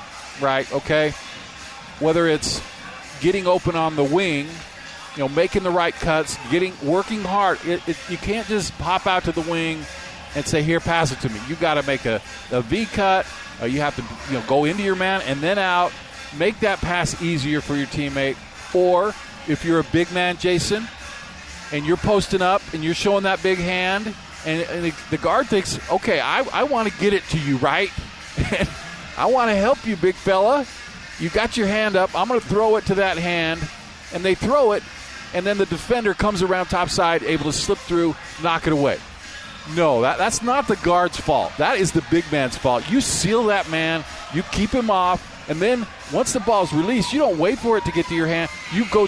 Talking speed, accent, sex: 210 wpm, American, male